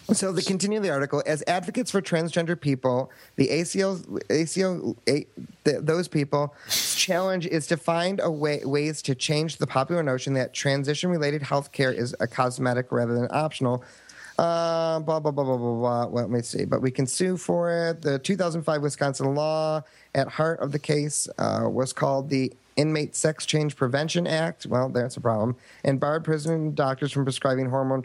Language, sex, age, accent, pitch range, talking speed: English, male, 30-49, American, 130-170 Hz, 185 wpm